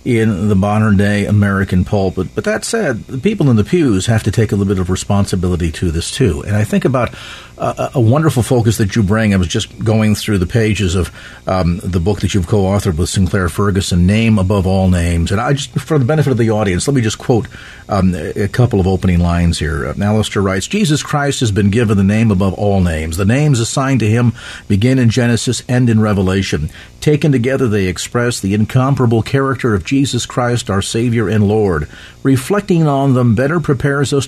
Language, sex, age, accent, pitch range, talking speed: English, male, 40-59, American, 100-130 Hz, 210 wpm